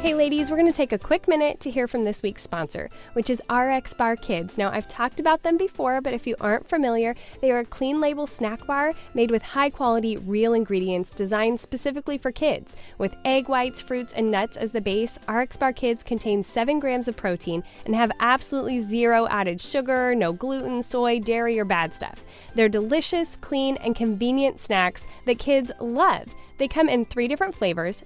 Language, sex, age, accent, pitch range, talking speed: English, female, 10-29, American, 215-275 Hz, 195 wpm